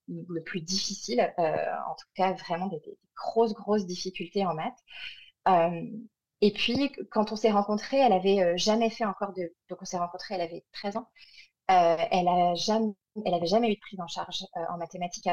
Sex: female